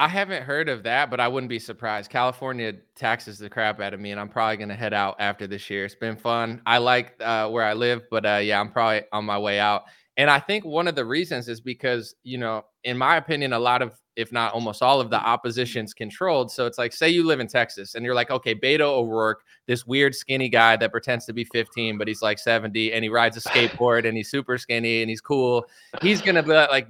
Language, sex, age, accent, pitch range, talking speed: English, male, 20-39, American, 110-140 Hz, 250 wpm